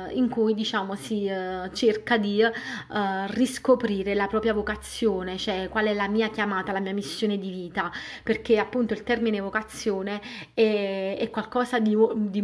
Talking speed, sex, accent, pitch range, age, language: 160 wpm, female, native, 195-230 Hz, 30-49, Italian